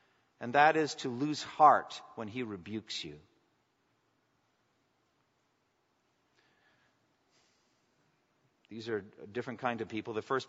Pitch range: 110-145 Hz